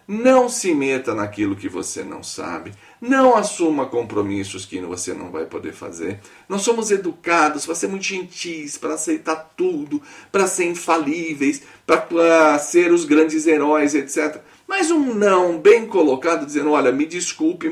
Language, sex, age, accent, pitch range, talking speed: Portuguese, male, 40-59, Brazilian, 145-230 Hz, 150 wpm